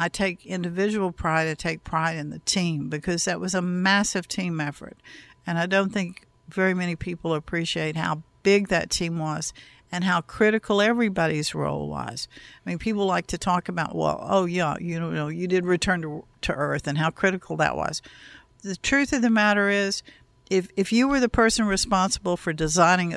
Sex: female